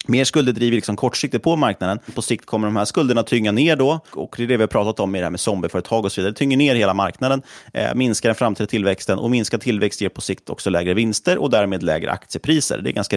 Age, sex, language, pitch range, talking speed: 30-49, male, Swedish, 100-130 Hz, 275 wpm